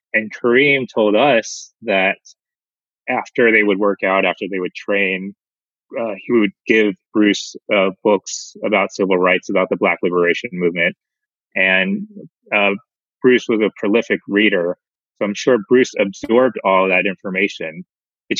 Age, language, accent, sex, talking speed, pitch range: 30-49, English, American, male, 145 wpm, 95-135 Hz